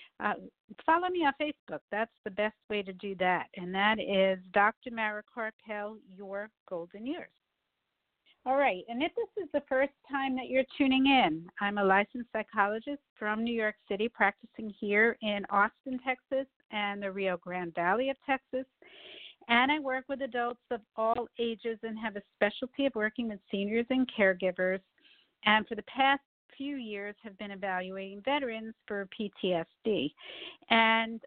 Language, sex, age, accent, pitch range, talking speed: English, female, 50-69, American, 205-260 Hz, 160 wpm